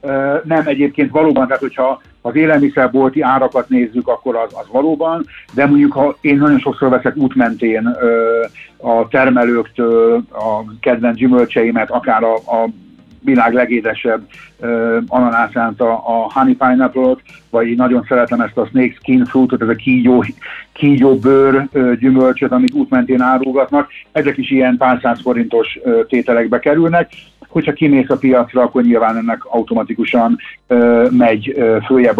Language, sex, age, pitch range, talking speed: Hungarian, male, 60-79, 115-140 Hz, 130 wpm